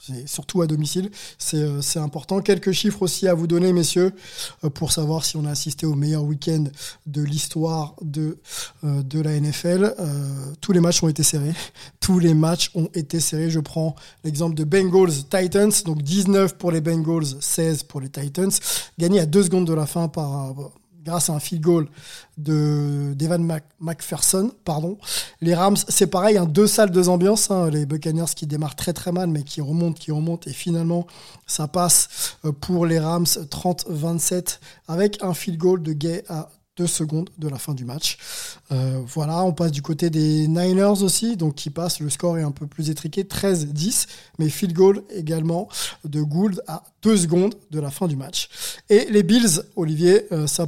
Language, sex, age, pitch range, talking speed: French, male, 20-39, 155-180 Hz, 180 wpm